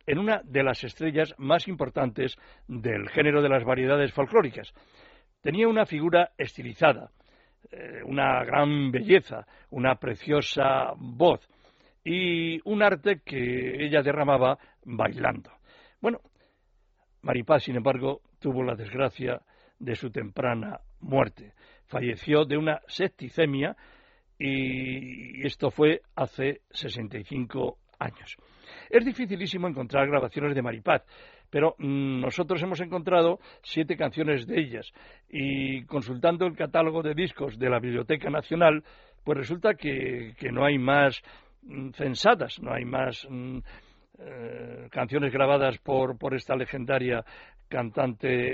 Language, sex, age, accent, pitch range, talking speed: Spanish, male, 60-79, Spanish, 130-160 Hz, 115 wpm